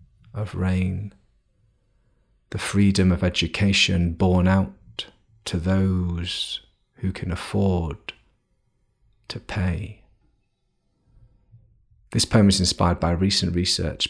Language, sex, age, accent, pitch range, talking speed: English, male, 30-49, British, 90-100 Hz, 95 wpm